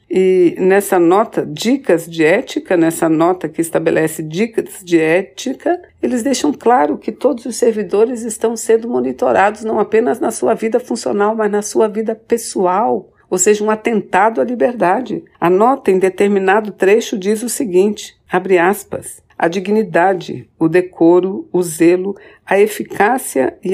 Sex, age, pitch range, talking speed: female, 60-79, 165-225 Hz, 150 wpm